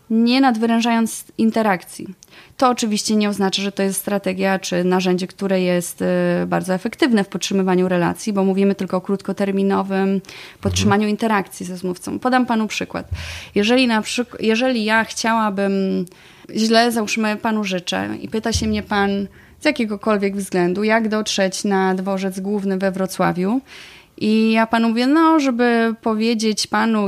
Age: 20-39